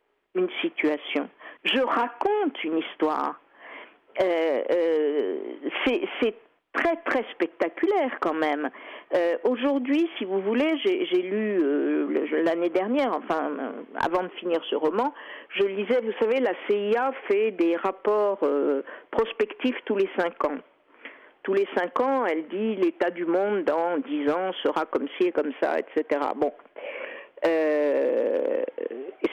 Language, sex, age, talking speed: French, female, 50-69, 140 wpm